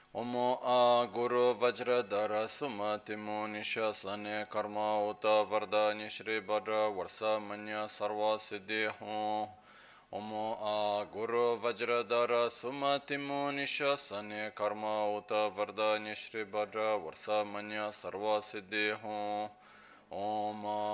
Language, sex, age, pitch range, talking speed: Italian, male, 20-39, 105-110 Hz, 95 wpm